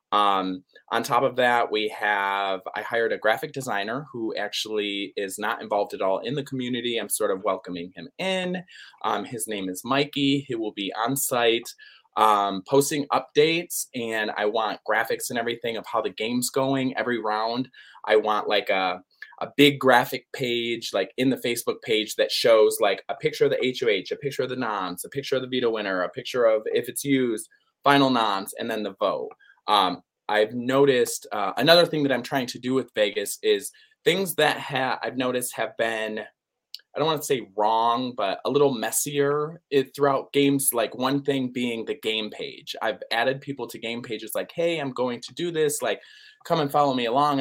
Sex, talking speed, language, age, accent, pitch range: male, 195 wpm, English, 20-39, American, 115-165 Hz